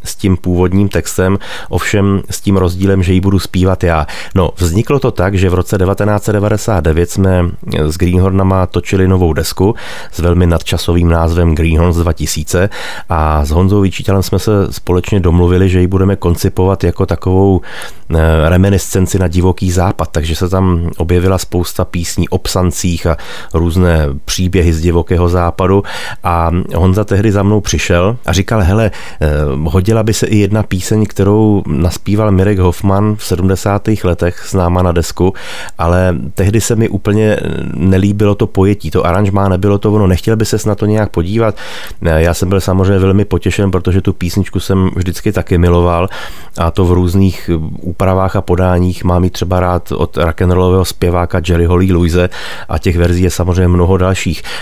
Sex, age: male, 30-49